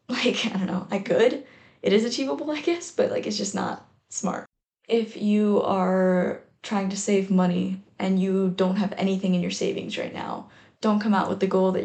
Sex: female